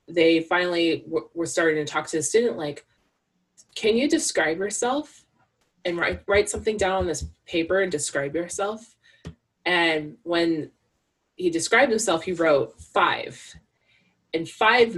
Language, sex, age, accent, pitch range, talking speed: English, female, 20-39, American, 150-190 Hz, 145 wpm